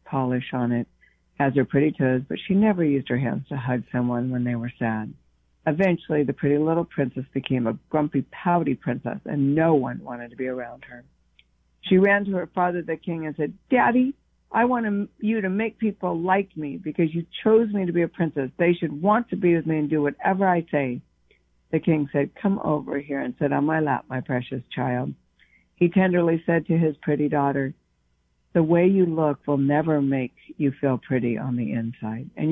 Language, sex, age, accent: English, female, 60-79, American